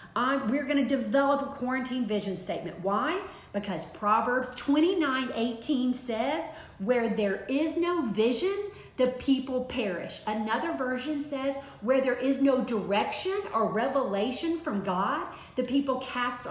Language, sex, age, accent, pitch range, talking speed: English, female, 40-59, American, 225-320 Hz, 140 wpm